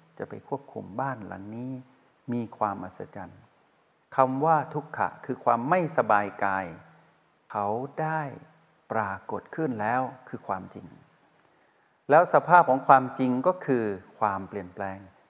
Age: 60-79